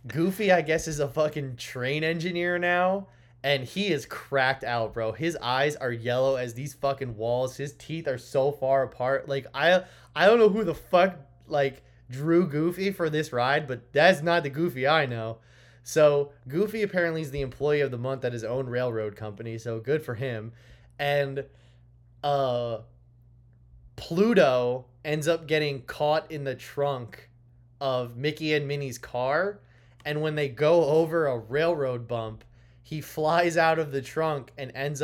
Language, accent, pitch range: English, American, 120-150 Hz